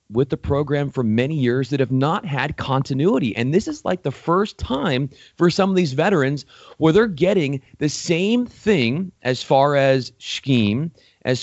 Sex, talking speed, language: male, 180 wpm, English